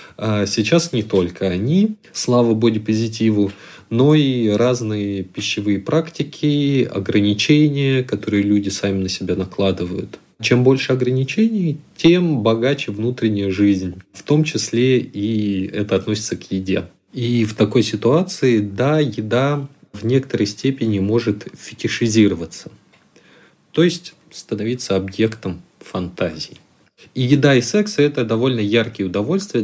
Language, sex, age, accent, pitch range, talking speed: Russian, male, 30-49, native, 105-130 Hz, 115 wpm